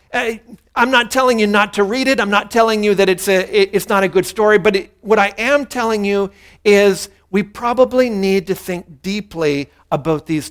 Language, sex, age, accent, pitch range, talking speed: English, male, 50-69, American, 165-225 Hz, 210 wpm